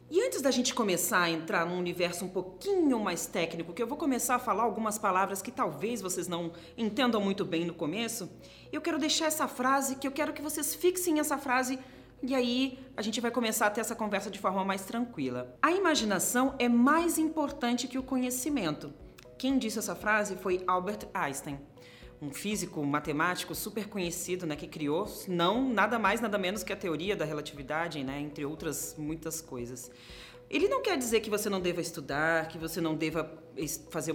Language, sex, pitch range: Portuguese, female, 165-245 Hz